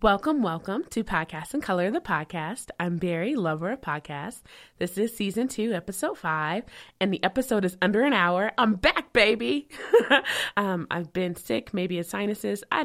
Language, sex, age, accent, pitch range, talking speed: English, female, 20-39, American, 175-215 Hz, 175 wpm